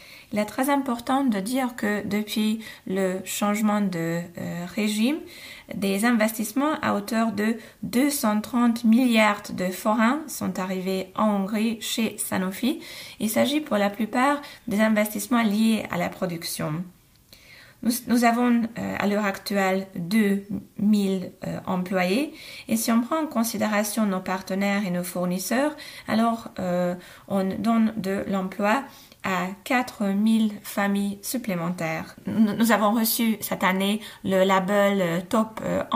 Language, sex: Hungarian, female